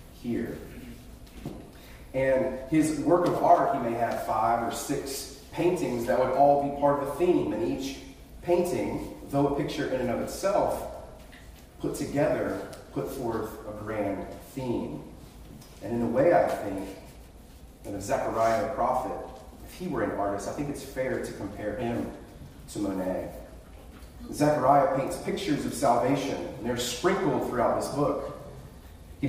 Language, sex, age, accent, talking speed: English, male, 30-49, American, 155 wpm